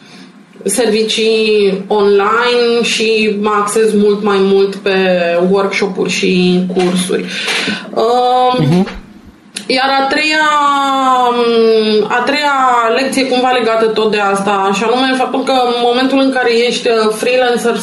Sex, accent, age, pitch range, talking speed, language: female, native, 20-39, 210-250 Hz, 110 wpm, Romanian